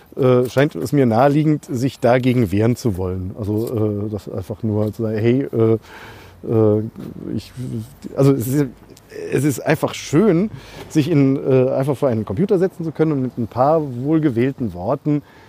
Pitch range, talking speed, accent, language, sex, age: 115-145 Hz, 170 wpm, German, German, male, 40-59